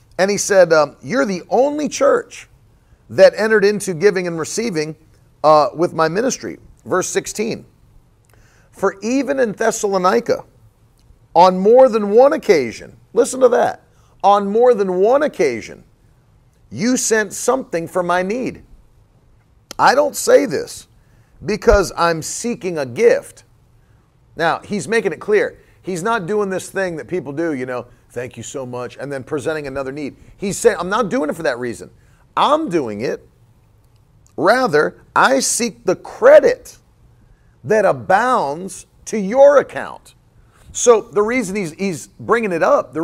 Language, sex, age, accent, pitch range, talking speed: English, male, 40-59, American, 140-230 Hz, 150 wpm